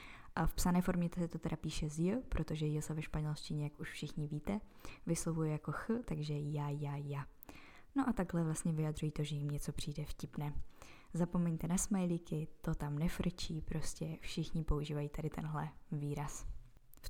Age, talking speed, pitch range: 20-39, 170 wpm, 155-180 Hz